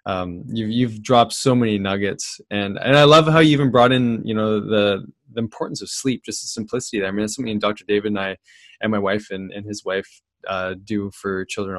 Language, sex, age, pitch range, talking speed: English, male, 20-39, 105-125 Hz, 235 wpm